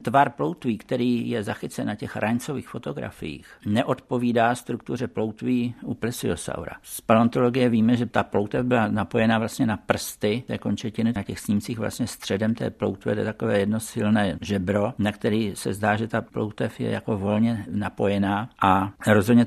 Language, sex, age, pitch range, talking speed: Czech, male, 60-79, 100-115 Hz, 155 wpm